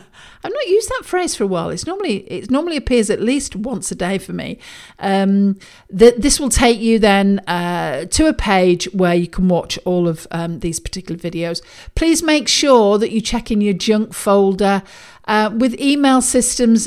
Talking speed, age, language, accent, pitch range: 185 wpm, 50-69, English, British, 180-230 Hz